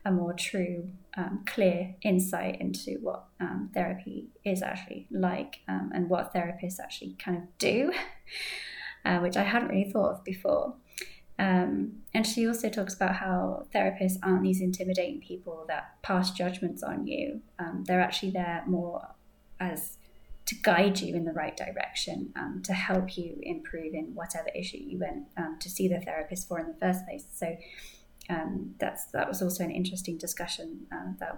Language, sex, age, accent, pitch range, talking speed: English, female, 20-39, British, 175-225 Hz, 170 wpm